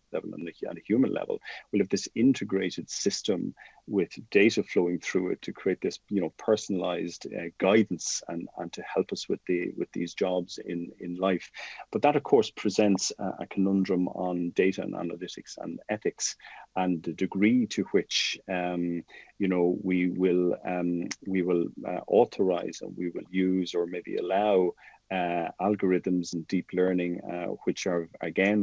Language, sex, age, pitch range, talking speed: English, male, 40-59, 90-95 Hz, 170 wpm